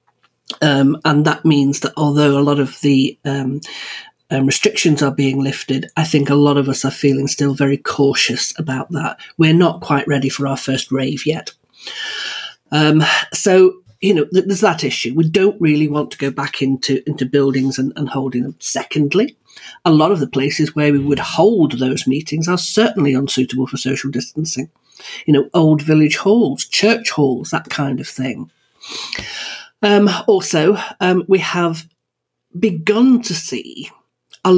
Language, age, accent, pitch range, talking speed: English, 40-59, British, 140-190 Hz, 170 wpm